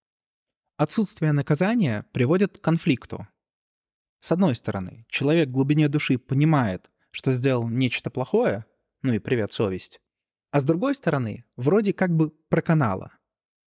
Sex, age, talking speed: male, 20-39, 125 wpm